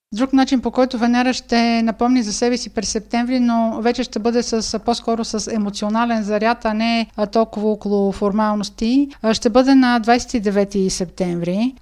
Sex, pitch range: female, 210-245 Hz